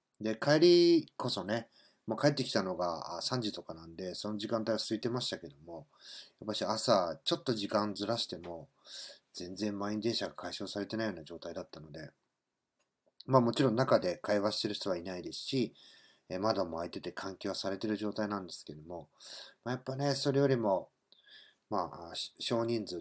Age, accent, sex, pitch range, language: 40-59, native, male, 95-130 Hz, Japanese